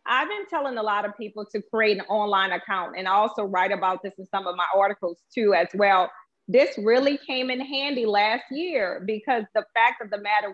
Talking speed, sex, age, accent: 215 wpm, female, 30-49, American